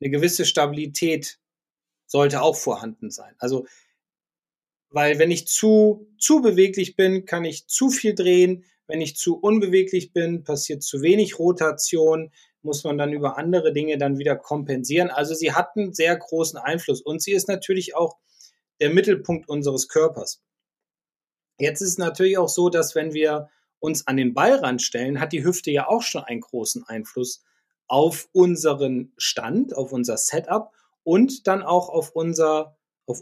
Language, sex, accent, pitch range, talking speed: German, male, German, 140-180 Hz, 160 wpm